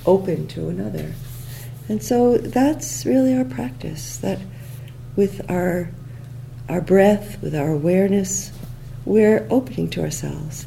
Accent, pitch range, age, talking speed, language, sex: American, 125-175 Hz, 50-69, 120 wpm, English, female